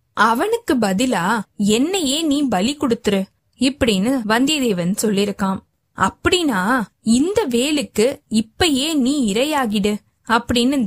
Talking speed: 90 wpm